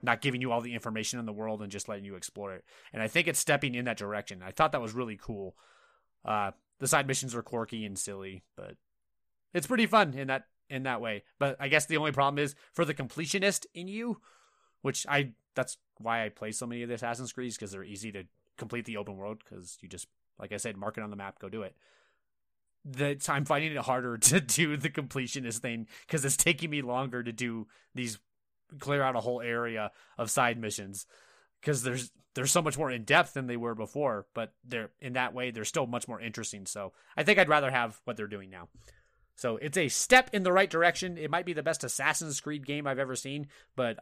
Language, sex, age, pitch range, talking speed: English, male, 20-39, 110-145 Hz, 230 wpm